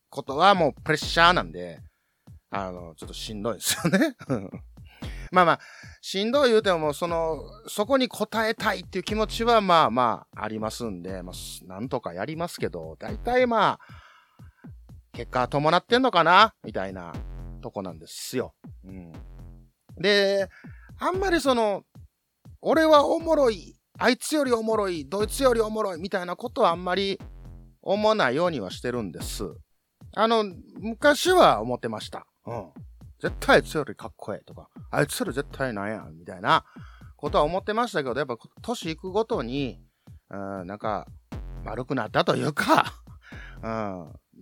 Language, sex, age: Japanese, male, 30-49